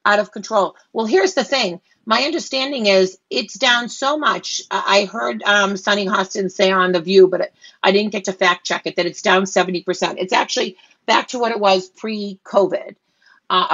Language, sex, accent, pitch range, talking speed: English, female, American, 185-225 Hz, 195 wpm